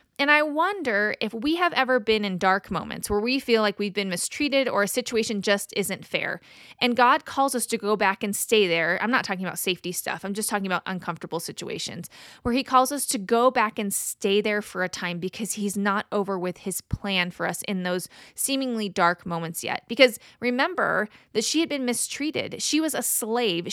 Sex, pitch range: female, 200-255 Hz